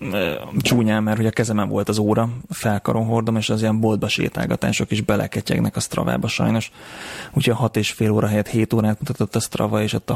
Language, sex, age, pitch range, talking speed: Hungarian, male, 30-49, 105-115 Hz, 200 wpm